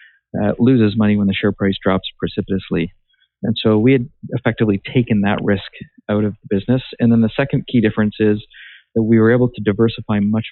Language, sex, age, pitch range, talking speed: English, male, 50-69, 100-115 Hz, 200 wpm